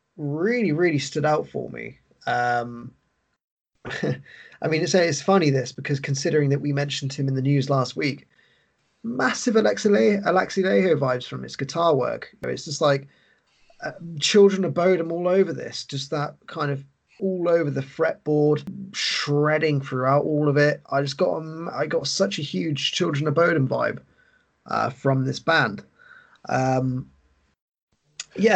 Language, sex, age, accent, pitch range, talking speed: English, male, 20-39, British, 135-180 Hz, 160 wpm